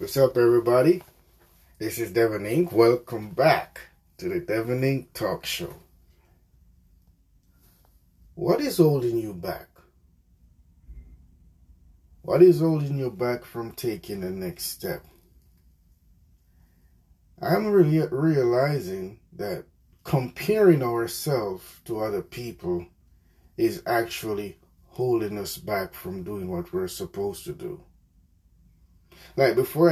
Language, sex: English, male